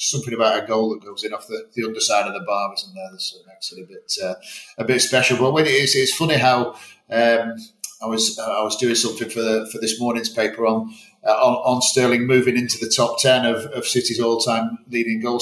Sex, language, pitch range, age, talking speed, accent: male, English, 110-130 Hz, 40-59, 240 wpm, British